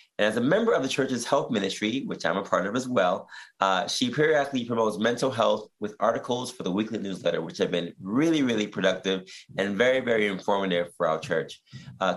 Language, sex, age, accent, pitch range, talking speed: English, male, 30-49, American, 100-130 Hz, 205 wpm